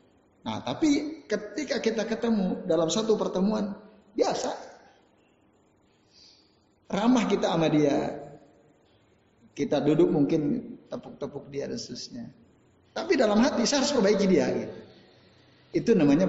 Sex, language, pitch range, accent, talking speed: male, Indonesian, 155-220 Hz, native, 110 wpm